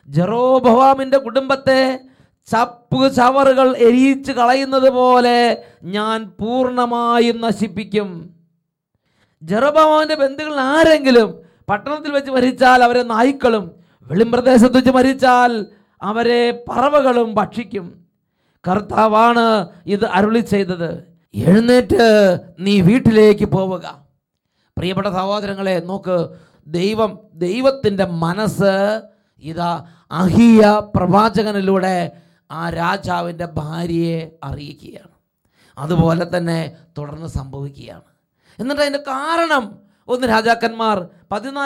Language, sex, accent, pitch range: English, male, Indian, 185-245 Hz